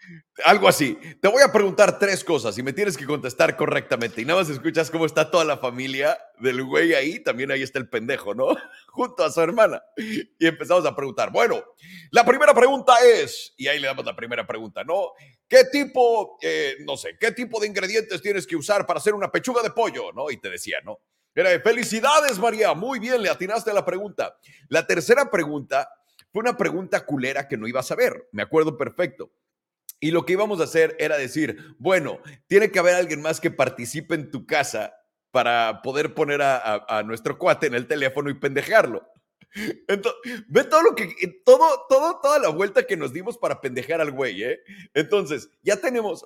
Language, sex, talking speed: English, male, 200 wpm